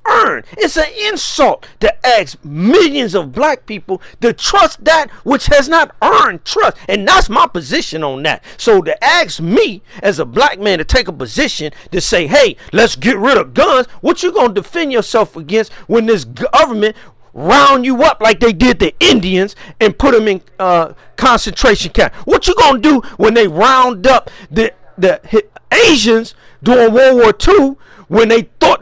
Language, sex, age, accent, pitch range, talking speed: English, male, 50-69, American, 215-310 Hz, 180 wpm